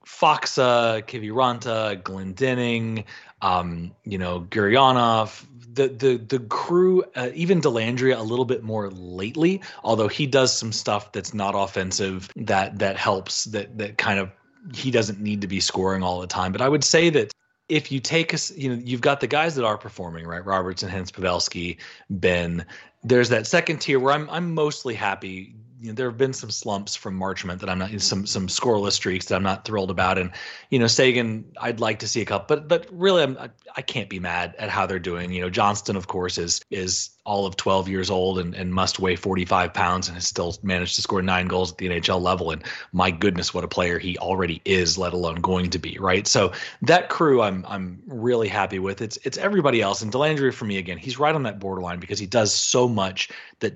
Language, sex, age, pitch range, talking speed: English, male, 30-49, 95-125 Hz, 220 wpm